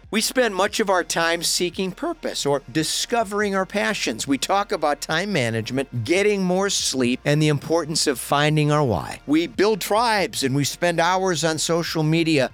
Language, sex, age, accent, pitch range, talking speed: English, male, 50-69, American, 135-180 Hz, 175 wpm